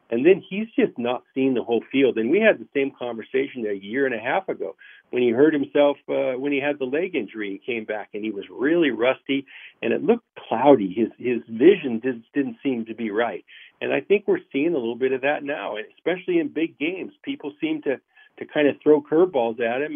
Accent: American